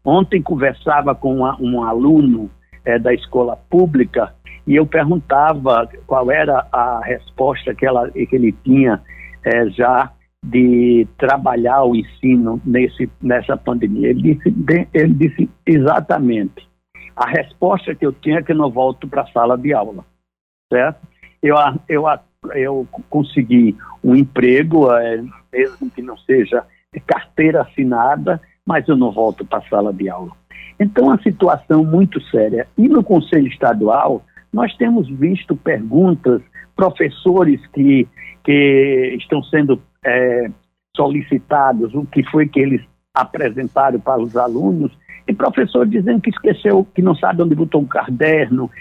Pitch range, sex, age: 120-160 Hz, male, 60-79